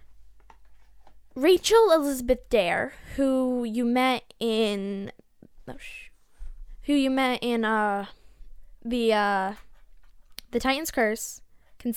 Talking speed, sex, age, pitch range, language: 90 wpm, female, 10-29, 205-265 Hz, English